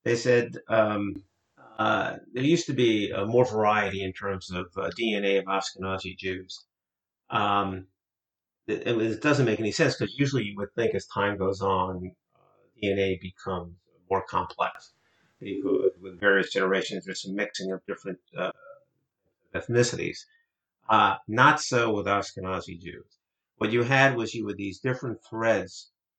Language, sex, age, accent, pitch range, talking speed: English, male, 50-69, American, 100-120 Hz, 150 wpm